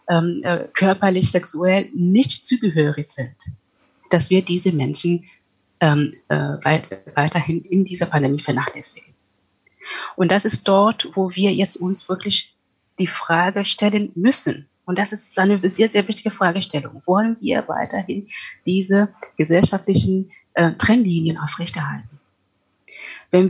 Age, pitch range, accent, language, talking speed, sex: 30-49, 155-200 Hz, German, German, 120 wpm, female